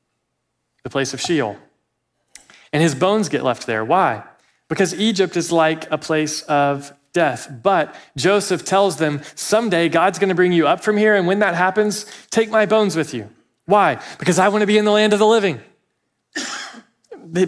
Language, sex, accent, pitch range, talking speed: English, male, American, 155-215 Hz, 185 wpm